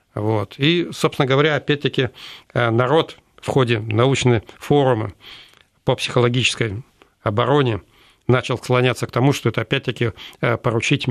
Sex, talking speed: male, 115 wpm